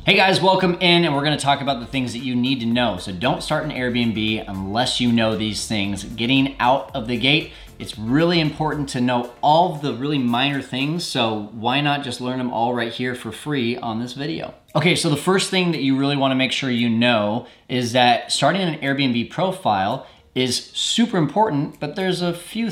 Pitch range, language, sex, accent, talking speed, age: 120-150 Hz, English, male, American, 215 wpm, 20-39